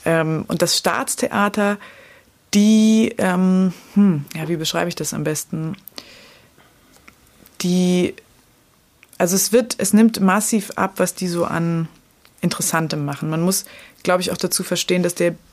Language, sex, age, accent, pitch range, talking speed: German, female, 20-39, German, 155-185 Hz, 145 wpm